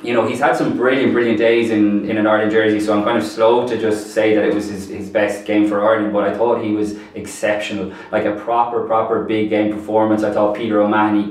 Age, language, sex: 20-39, English, male